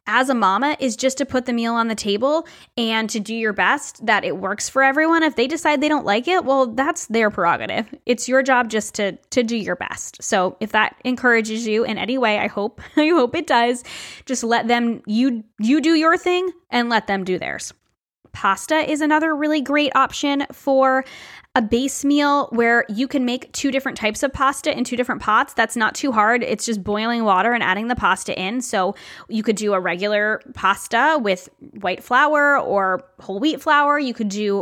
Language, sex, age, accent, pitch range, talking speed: English, female, 10-29, American, 210-270 Hz, 210 wpm